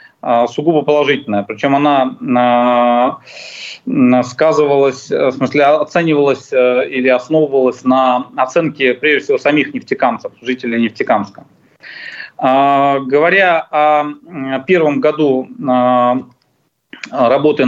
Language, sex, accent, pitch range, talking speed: Russian, male, native, 125-155 Hz, 80 wpm